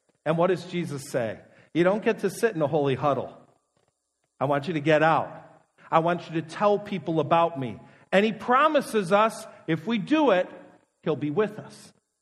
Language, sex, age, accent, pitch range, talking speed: English, male, 50-69, American, 175-230 Hz, 195 wpm